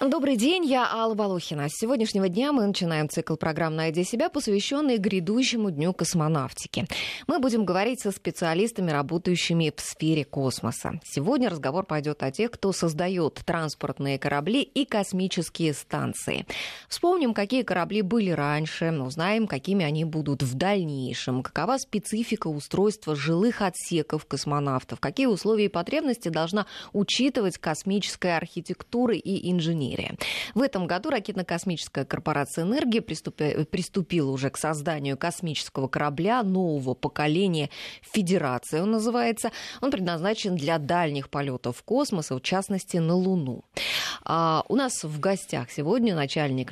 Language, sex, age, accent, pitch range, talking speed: Russian, female, 20-39, native, 150-210 Hz, 130 wpm